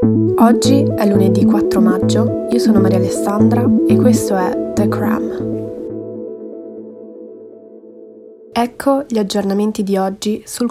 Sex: female